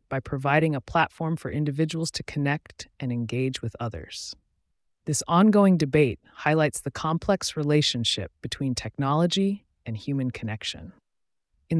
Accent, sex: American, female